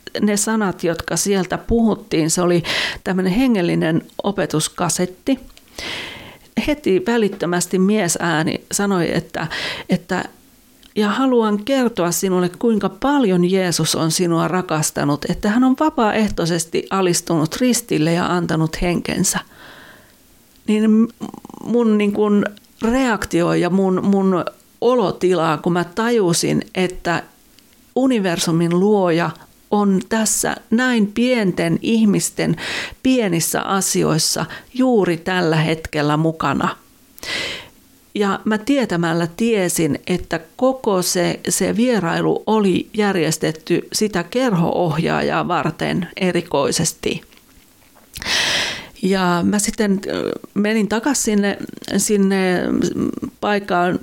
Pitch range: 175-225 Hz